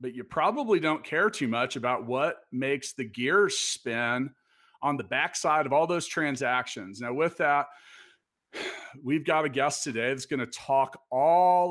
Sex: male